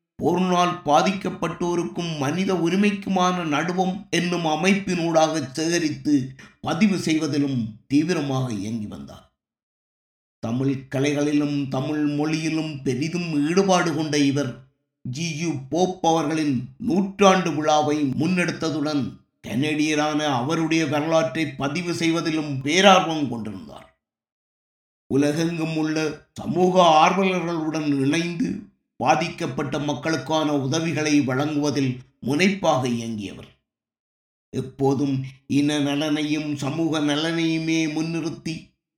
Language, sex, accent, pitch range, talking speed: Tamil, male, native, 135-165 Hz, 80 wpm